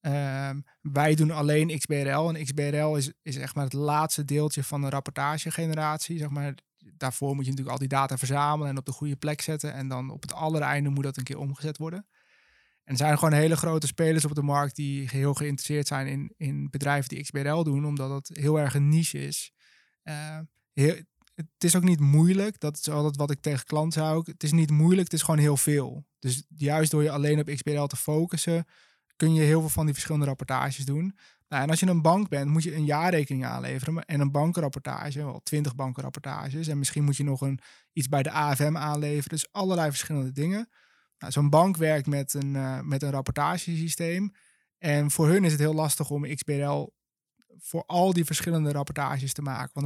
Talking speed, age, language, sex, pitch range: 210 wpm, 20-39, Dutch, male, 140-160 Hz